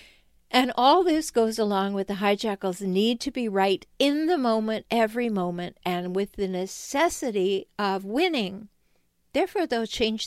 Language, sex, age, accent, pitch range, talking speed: English, female, 60-79, American, 205-270 Hz, 150 wpm